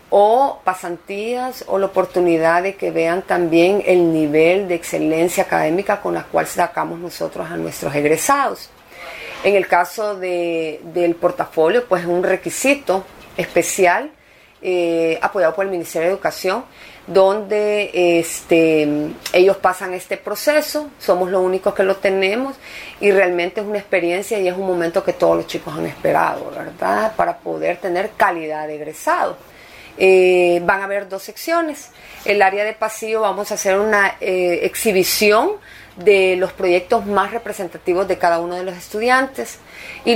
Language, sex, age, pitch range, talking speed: Spanish, female, 40-59, 175-210 Hz, 150 wpm